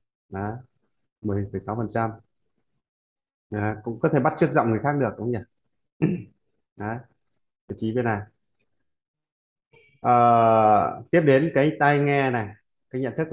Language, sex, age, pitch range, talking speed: Vietnamese, male, 20-39, 110-135 Hz, 125 wpm